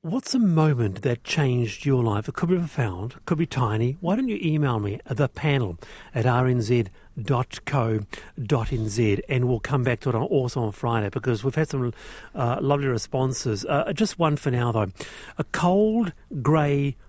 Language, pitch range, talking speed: English, 125-180 Hz, 170 wpm